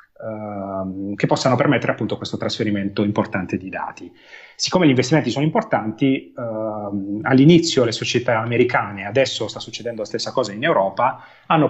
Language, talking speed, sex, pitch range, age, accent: Italian, 145 wpm, male, 110-135 Hz, 30-49, native